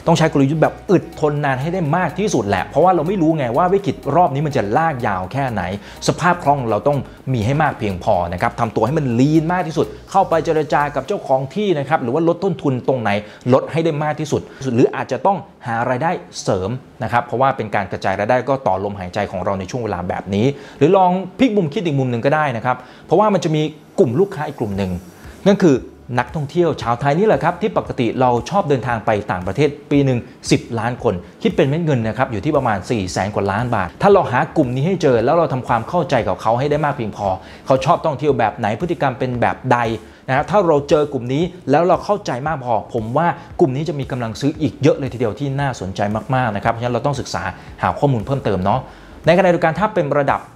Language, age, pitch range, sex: Thai, 30-49, 115-160 Hz, male